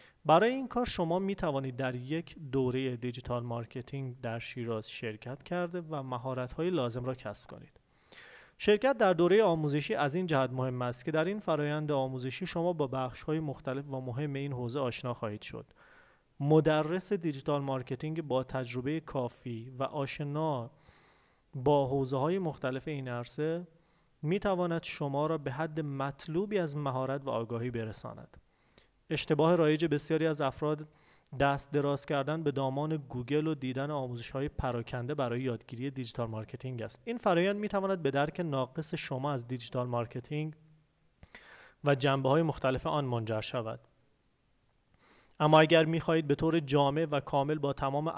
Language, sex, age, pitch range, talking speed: Persian, male, 30-49, 130-160 Hz, 150 wpm